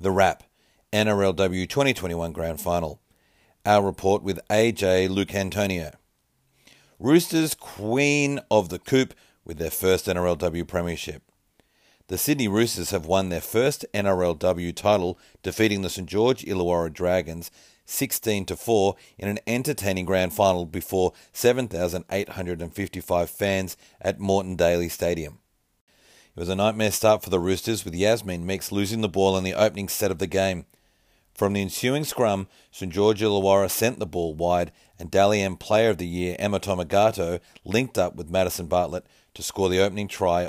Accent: Australian